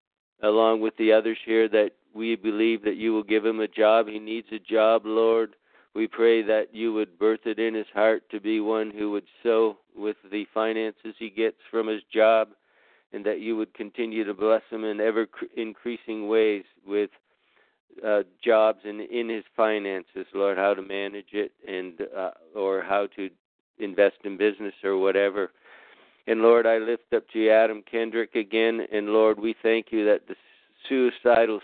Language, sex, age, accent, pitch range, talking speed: English, male, 50-69, American, 105-115 Hz, 180 wpm